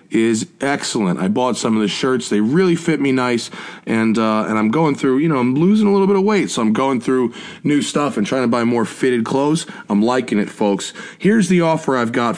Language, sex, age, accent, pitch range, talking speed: English, male, 30-49, American, 120-175 Hz, 240 wpm